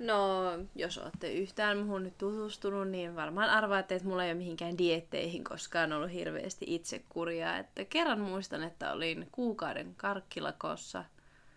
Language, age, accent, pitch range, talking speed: Finnish, 20-39, native, 170-210 Hz, 140 wpm